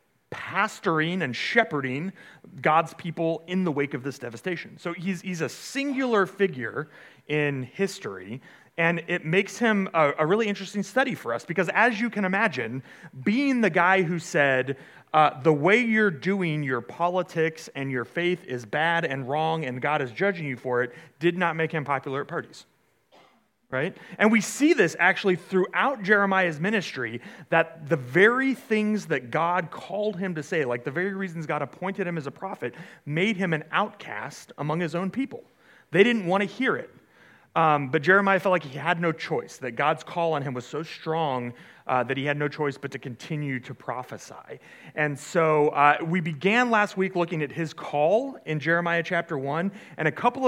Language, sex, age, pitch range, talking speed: English, male, 30-49, 145-190 Hz, 185 wpm